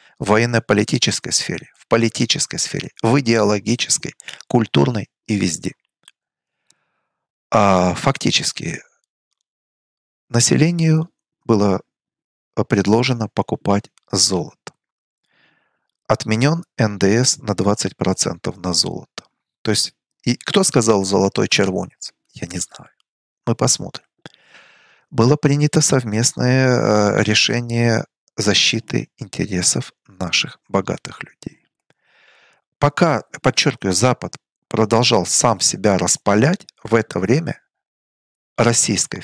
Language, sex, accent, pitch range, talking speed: Russian, male, native, 105-135 Hz, 85 wpm